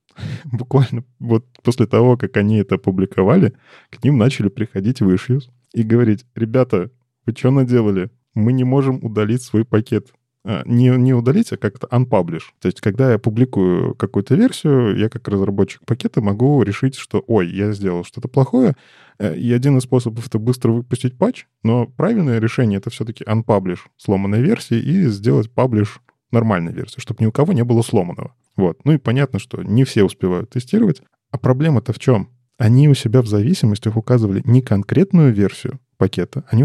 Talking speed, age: 170 wpm, 20-39